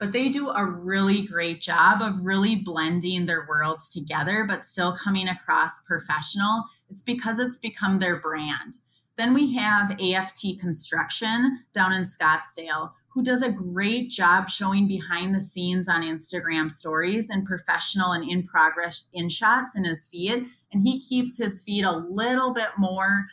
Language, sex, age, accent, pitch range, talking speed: English, female, 20-39, American, 165-205 Hz, 160 wpm